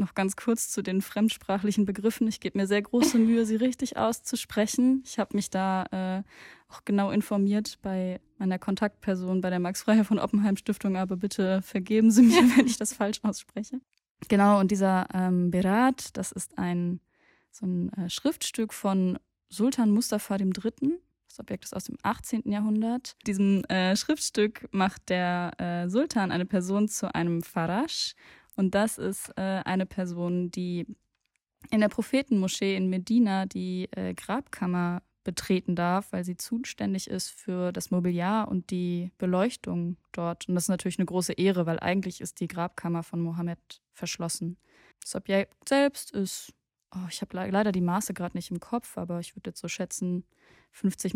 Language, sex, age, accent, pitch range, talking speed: German, female, 10-29, German, 180-215 Hz, 165 wpm